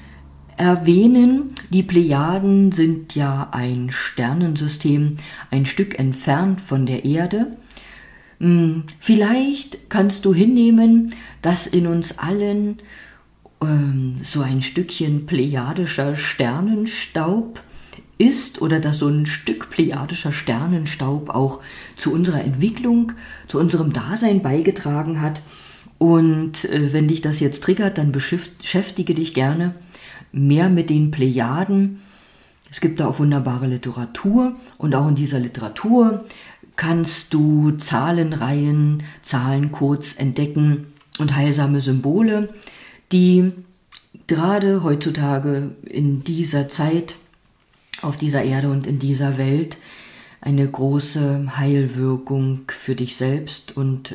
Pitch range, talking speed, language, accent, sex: 135-180 Hz, 110 wpm, German, German, female